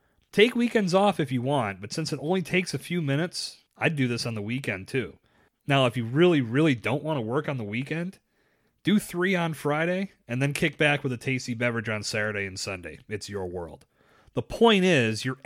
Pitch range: 125-170 Hz